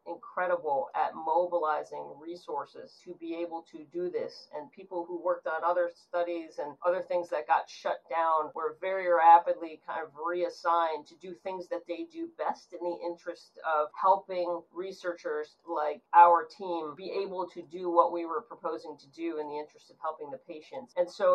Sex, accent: female, American